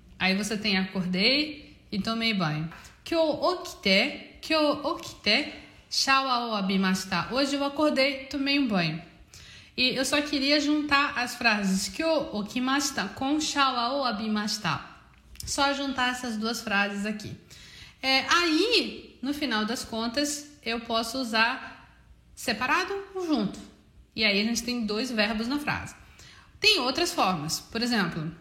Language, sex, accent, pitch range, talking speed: Portuguese, female, Brazilian, 210-290 Hz, 130 wpm